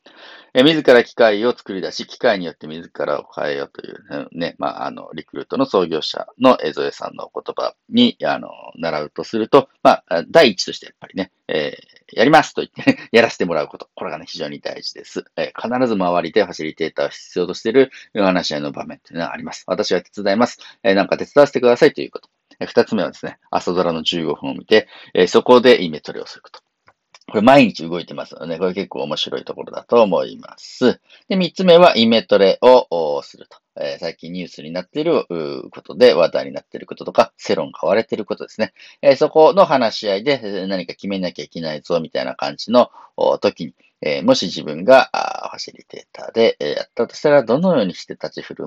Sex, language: male, Japanese